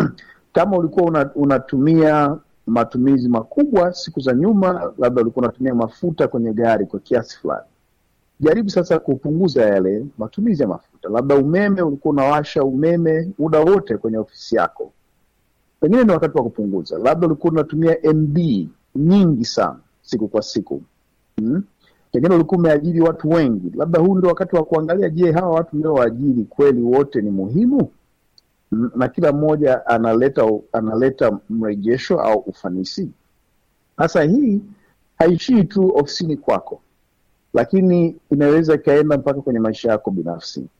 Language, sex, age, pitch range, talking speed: Swahili, male, 50-69, 120-170 Hz, 130 wpm